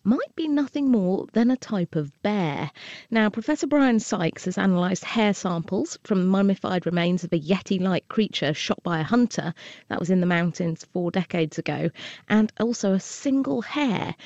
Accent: British